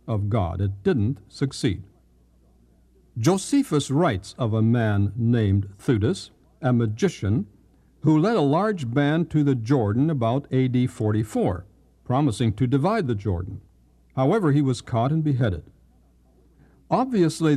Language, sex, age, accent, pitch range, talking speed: English, male, 60-79, American, 100-140 Hz, 125 wpm